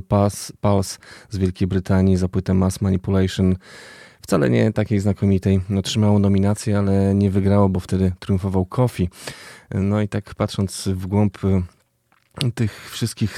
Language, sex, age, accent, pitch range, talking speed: Polish, male, 20-39, native, 95-105 Hz, 130 wpm